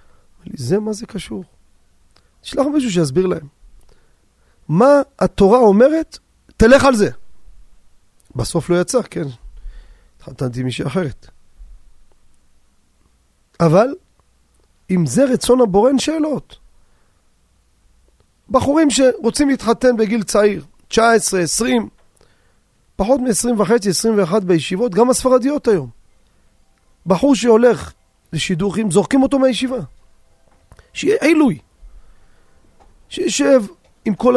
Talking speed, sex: 95 wpm, male